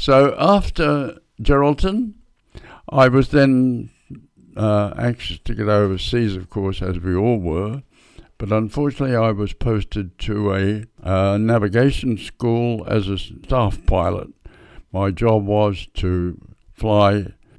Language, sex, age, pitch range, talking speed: English, male, 60-79, 95-115 Hz, 125 wpm